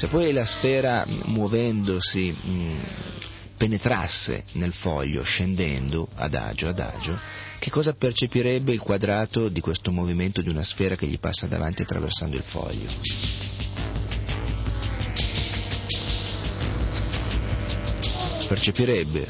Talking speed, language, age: 105 wpm, Italian, 40-59